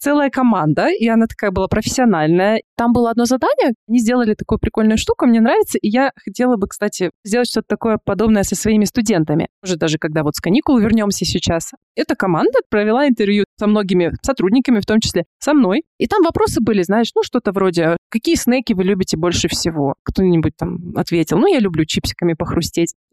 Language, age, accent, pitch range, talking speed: Russian, 20-39, native, 190-275 Hz, 185 wpm